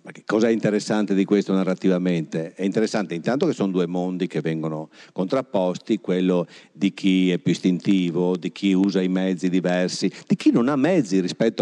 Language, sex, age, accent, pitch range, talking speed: Italian, male, 50-69, native, 90-110 Hz, 175 wpm